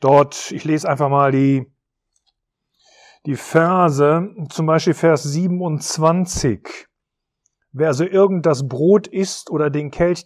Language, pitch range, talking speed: German, 140-170 Hz, 130 wpm